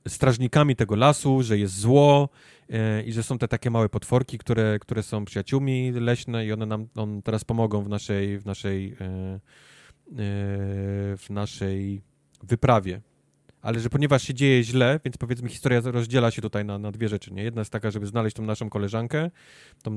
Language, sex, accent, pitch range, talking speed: Polish, male, native, 105-125 Hz, 180 wpm